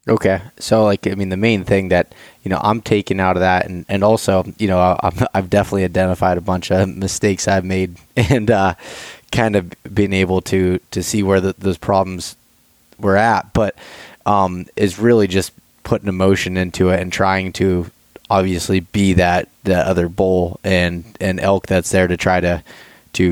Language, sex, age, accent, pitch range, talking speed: English, male, 20-39, American, 95-105 Hz, 190 wpm